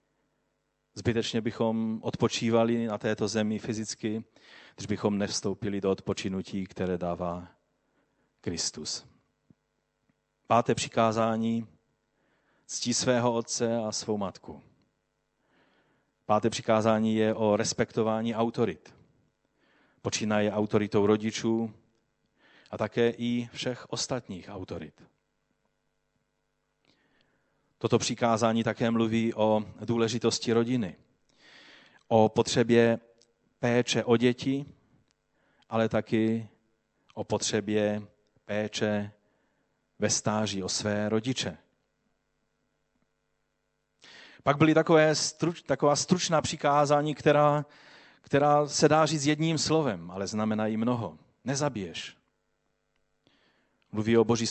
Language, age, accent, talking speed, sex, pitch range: Czech, 40-59, native, 90 wpm, male, 105-120 Hz